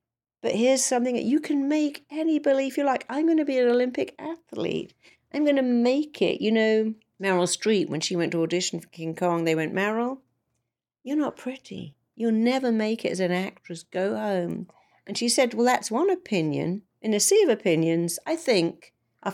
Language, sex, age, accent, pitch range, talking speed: English, female, 50-69, British, 160-235 Hz, 195 wpm